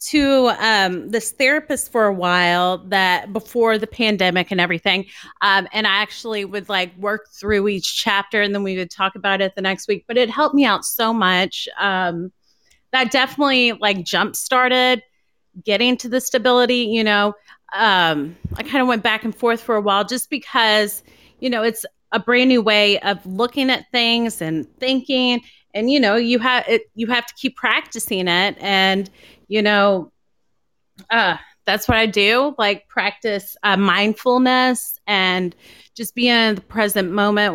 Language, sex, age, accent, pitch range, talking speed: English, female, 30-49, American, 195-240 Hz, 175 wpm